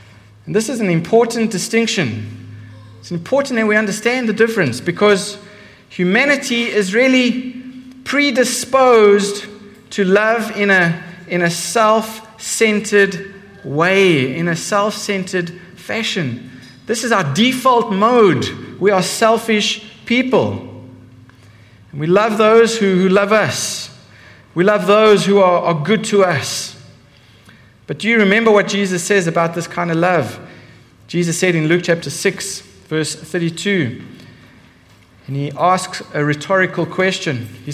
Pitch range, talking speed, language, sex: 140-210 Hz, 130 wpm, English, male